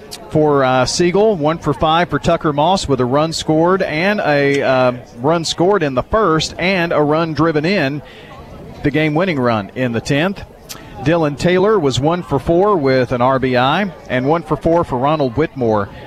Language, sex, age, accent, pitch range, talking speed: English, male, 40-59, American, 130-170 Hz, 180 wpm